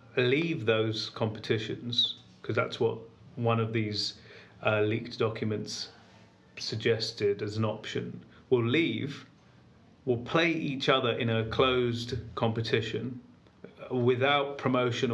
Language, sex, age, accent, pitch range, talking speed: English, male, 30-49, British, 105-125 Hz, 110 wpm